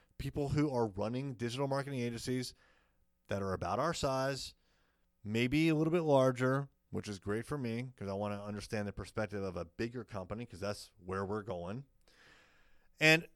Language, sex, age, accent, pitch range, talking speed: English, male, 30-49, American, 95-120 Hz, 175 wpm